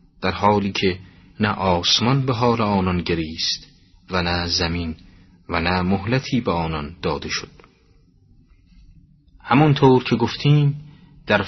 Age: 30-49